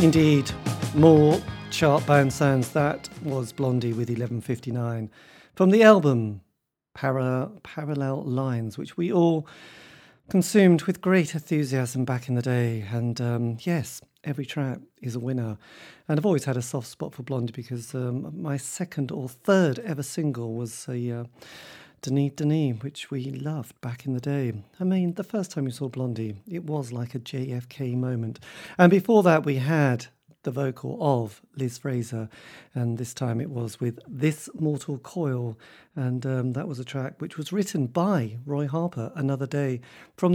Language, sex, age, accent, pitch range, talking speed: English, male, 40-59, British, 125-155 Hz, 165 wpm